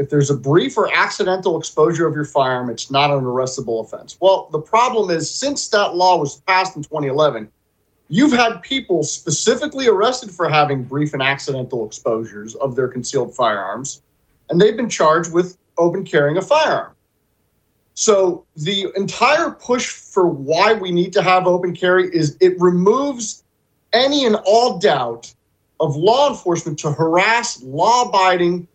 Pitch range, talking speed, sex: 140-215 Hz, 155 wpm, male